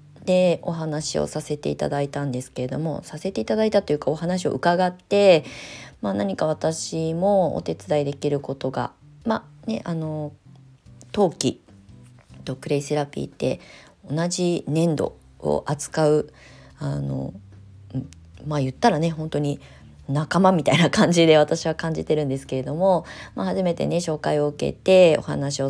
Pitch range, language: 135-165 Hz, Japanese